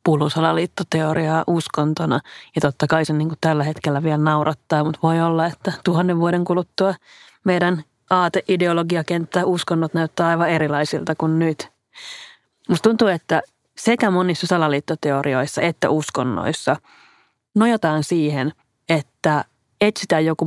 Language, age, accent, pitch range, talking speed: Finnish, 30-49, native, 145-180 Hz, 115 wpm